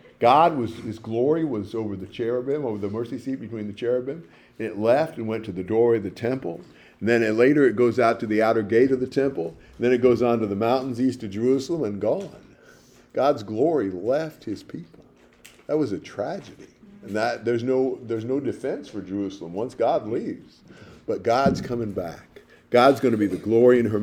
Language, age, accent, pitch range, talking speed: English, 50-69, American, 110-140 Hz, 215 wpm